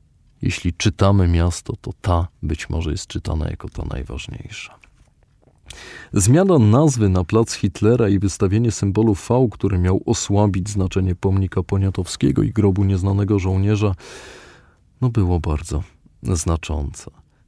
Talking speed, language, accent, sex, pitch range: 120 wpm, Polish, native, male, 95-115 Hz